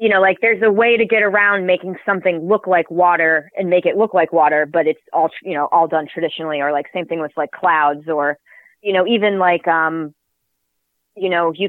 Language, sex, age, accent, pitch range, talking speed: English, female, 20-39, American, 155-180 Hz, 225 wpm